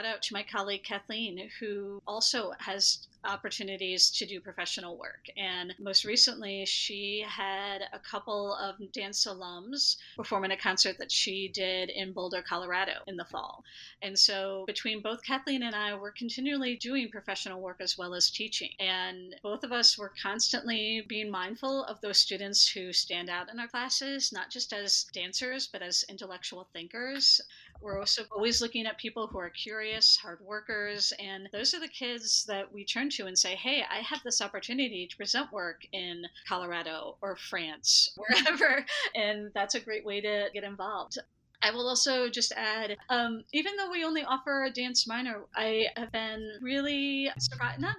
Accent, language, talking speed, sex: American, English, 175 wpm, female